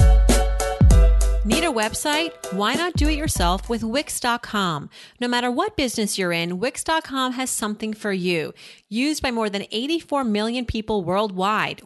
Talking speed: 145 wpm